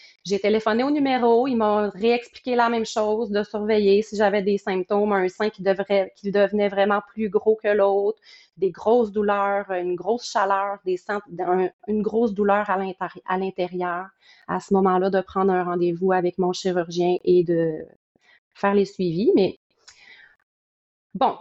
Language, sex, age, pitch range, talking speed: French, female, 30-49, 195-240 Hz, 155 wpm